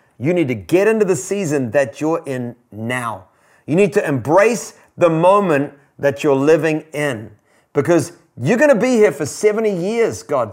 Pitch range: 145-210 Hz